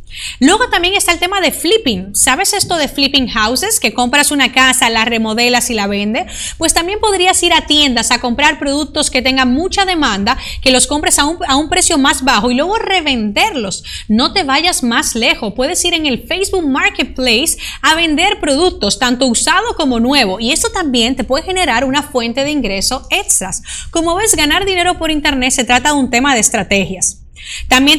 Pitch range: 240-310 Hz